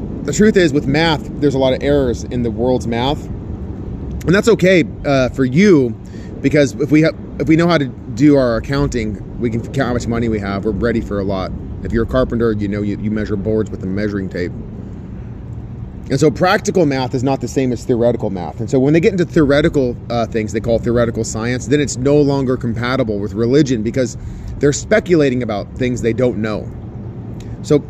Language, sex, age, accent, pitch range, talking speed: English, male, 30-49, American, 110-145 Hz, 215 wpm